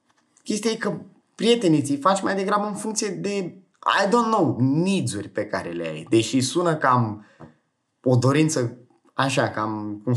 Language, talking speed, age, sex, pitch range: Romanian, 155 wpm, 20-39, male, 125-175 Hz